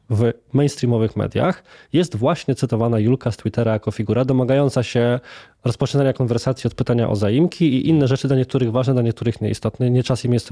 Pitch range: 115-150 Hz